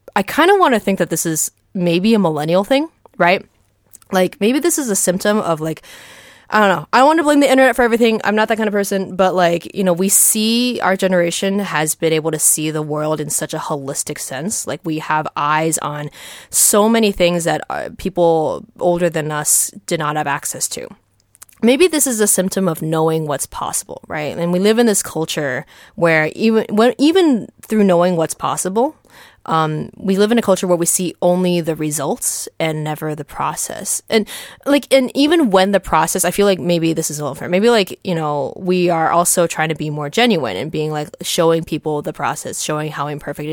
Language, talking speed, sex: English, 215 wpm, female